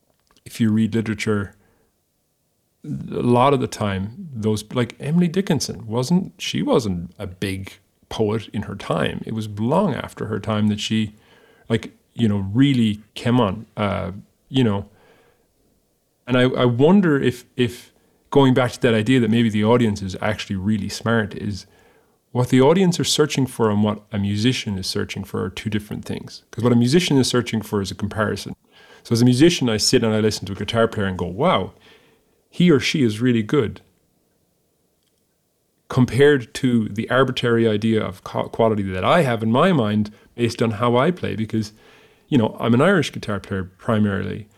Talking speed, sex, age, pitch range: 180 wpm, male, 30-49, 105-125 Hz